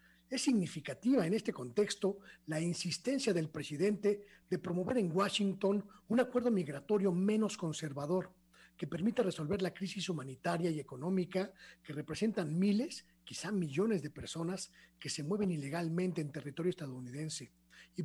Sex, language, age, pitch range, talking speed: male, Spanish, 40-59, 150-195 Hz, 135 wpm